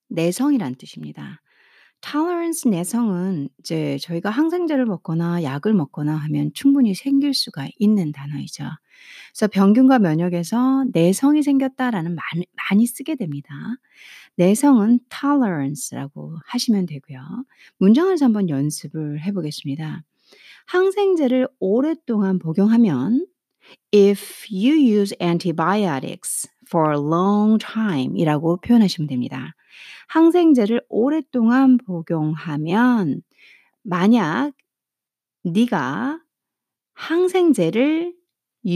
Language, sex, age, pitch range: Korean, female, 40-59, 165-260 Hz